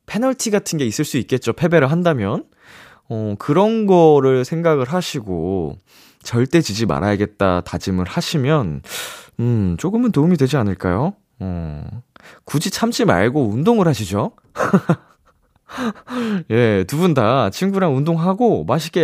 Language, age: Korean, 20-39